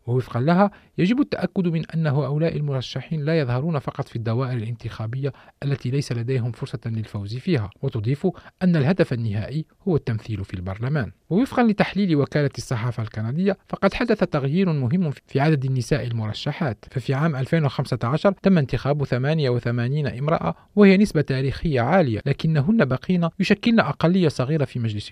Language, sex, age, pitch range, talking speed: Arabic, male, 40-59, 120-165 Hz, 140 wpm